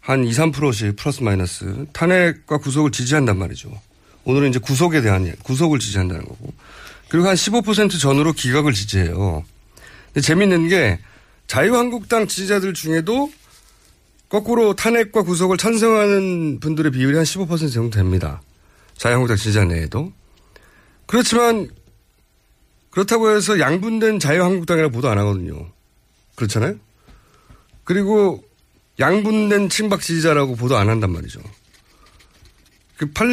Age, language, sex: 30-49, Korean, male